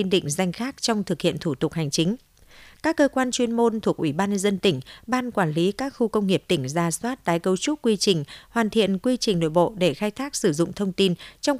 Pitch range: 170-225 Hz